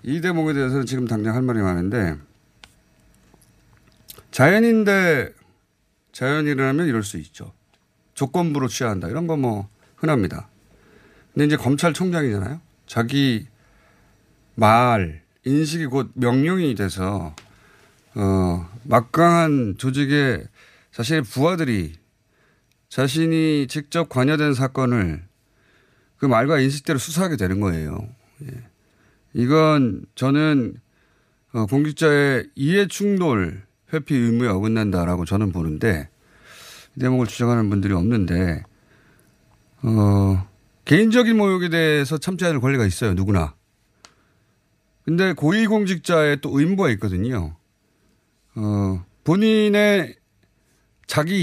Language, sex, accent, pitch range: Korean, male, native, 105-150 Hz